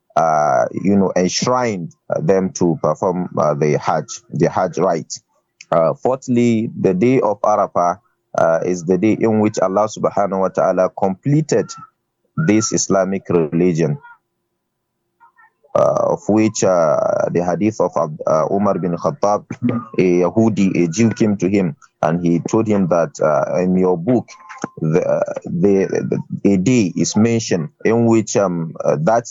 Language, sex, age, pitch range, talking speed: English, male, 30-49, 90-110 Hz, 145 wpm